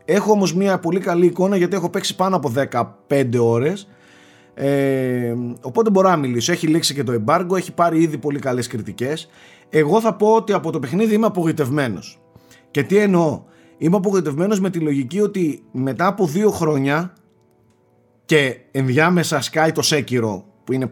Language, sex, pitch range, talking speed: Greek, male, 130-180 Hz, 165 wpm